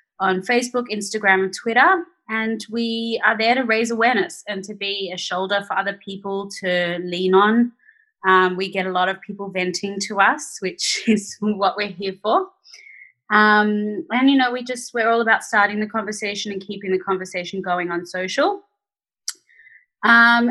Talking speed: 175 wpm